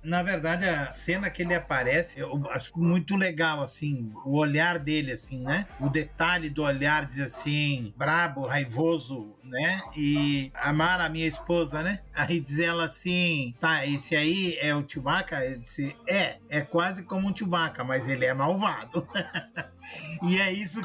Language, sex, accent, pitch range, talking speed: Portuguese, male, Brazilian, 150-190 Hz, 165 wpm